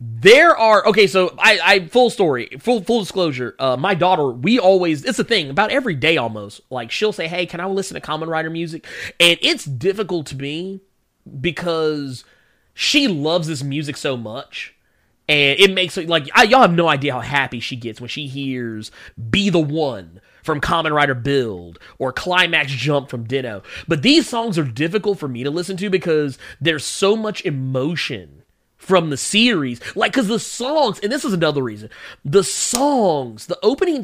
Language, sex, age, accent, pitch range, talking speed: English, male, 30-49, American, 140-200 Hz, 185 wpm